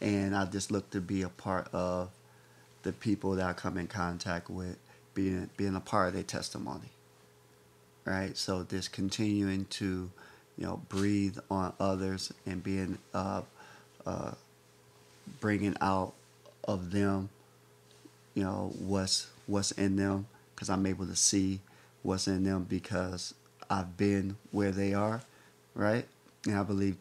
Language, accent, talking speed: English, American, 145 wpm